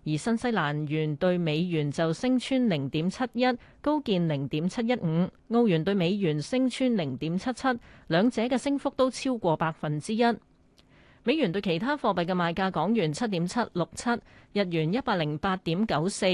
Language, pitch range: Chinese, 160-225 Hz